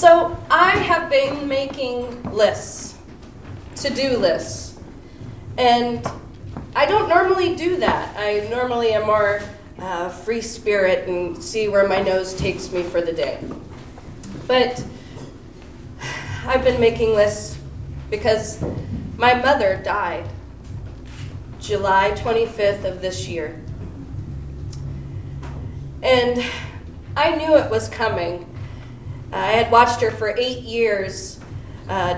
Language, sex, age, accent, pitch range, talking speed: English, female, 20-39, American, 170-255 Hz, 110 wpm